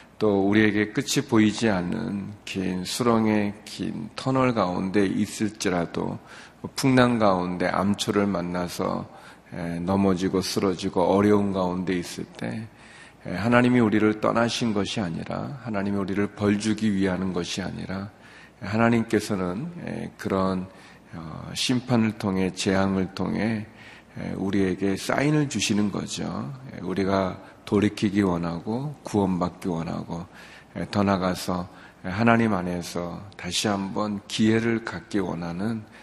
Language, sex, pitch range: Korean, male, 95-110 Hz